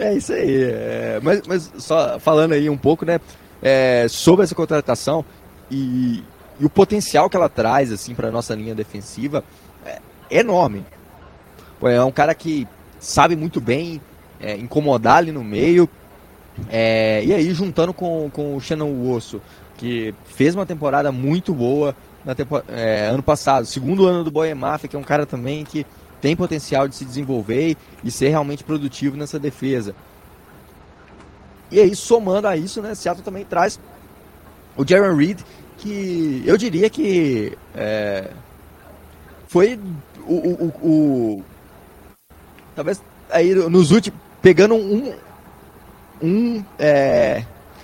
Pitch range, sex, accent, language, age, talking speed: 110-170 Hz, male, Brazilian, Portuguese, 20-39, 145 wpm